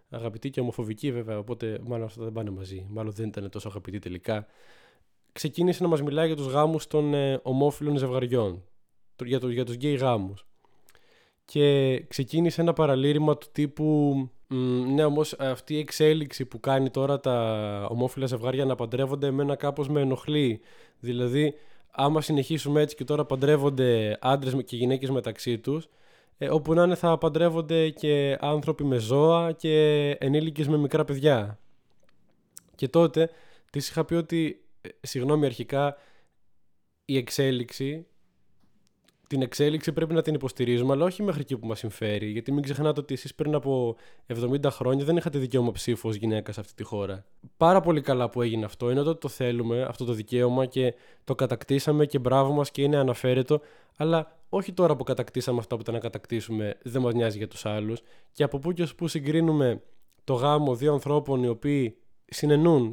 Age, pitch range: 20-39, 120-150 Hz